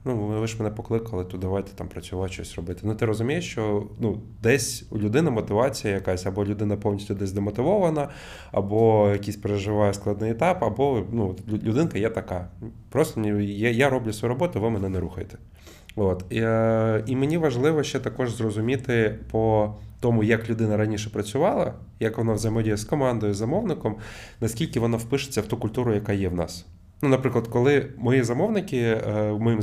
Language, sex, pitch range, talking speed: Ukrainian, male, 100-120 Hz, 165 wpm